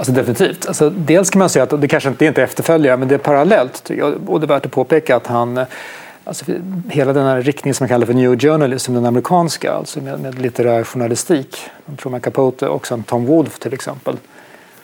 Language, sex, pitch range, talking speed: Swedish, male, 125-160 Hz, 200 wpm